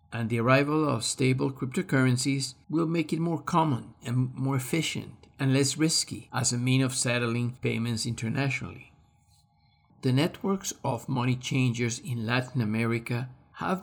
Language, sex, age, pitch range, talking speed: English, male, 50-69, 115-135 Hz, 145 wpm